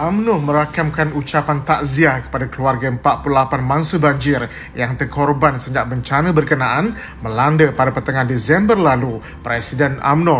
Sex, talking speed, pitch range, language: male, 120 wpm, 140-180 Hz, Malay